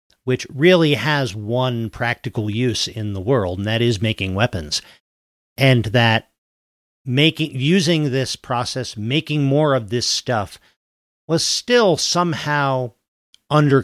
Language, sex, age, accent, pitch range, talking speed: English, male, 50-69, American, 105-140 Hz, 125 wpm